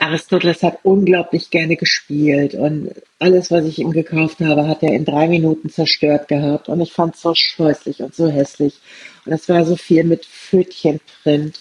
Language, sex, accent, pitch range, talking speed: German, female, German, 145-175 Hz, 180 wpm